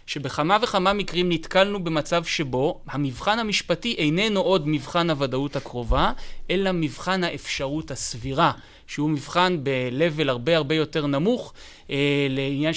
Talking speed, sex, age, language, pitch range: 120 wpm, male, 20-39, Hebrew, 140-180 Hz